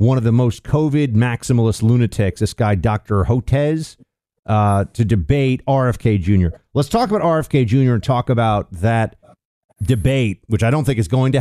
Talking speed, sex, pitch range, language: 175 wpm, male, 105-140 Hz, English